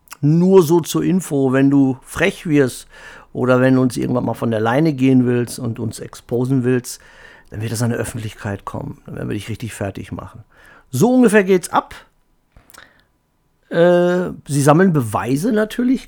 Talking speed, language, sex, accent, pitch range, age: 175 wpm, German, male, German, 115-150 Hz, 50-69